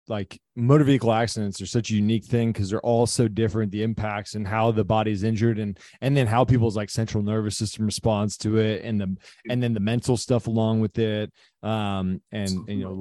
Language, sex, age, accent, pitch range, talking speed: English, male, 20-39, American, 105-120 Hz, 220 wpm